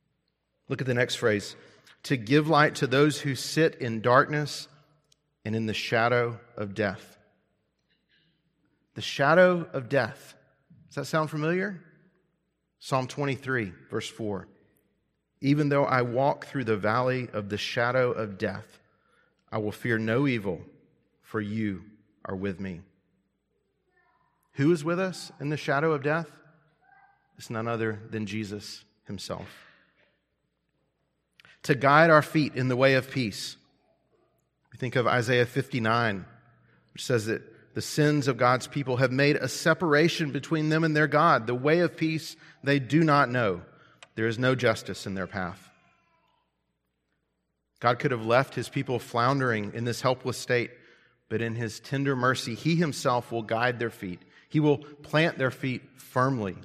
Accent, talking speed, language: American, 150 wpm, English